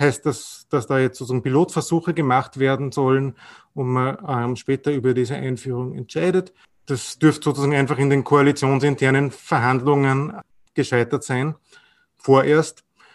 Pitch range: 135-155 Hz